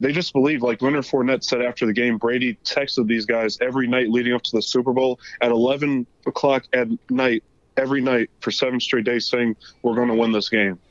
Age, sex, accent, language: 20-39, male, American, English